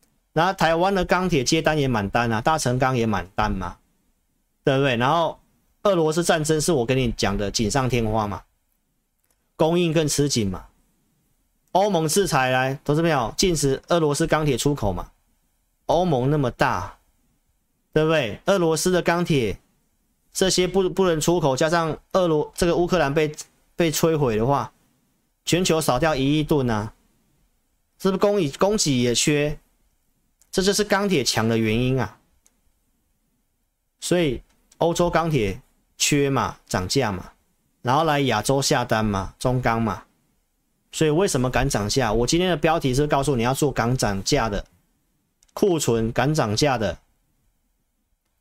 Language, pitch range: Chinese, 120-165 Hz